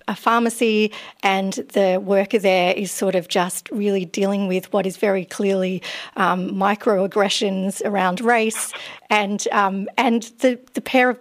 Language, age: English, 40-59